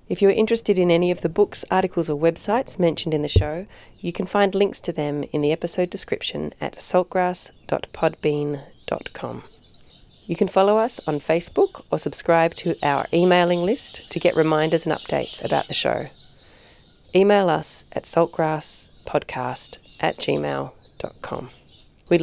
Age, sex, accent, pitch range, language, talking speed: 30-49, female, Australian, 150-185 Hz, English, 150 wpm